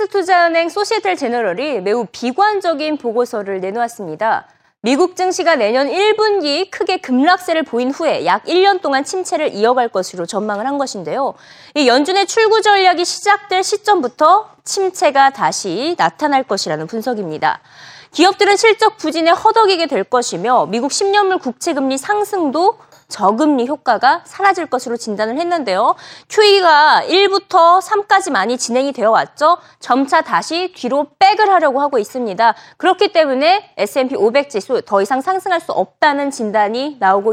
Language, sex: Korean, female